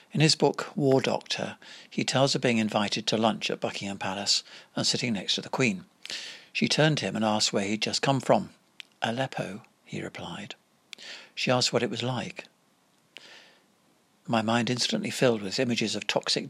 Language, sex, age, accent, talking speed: English, male, 60-79, British, 180 wpm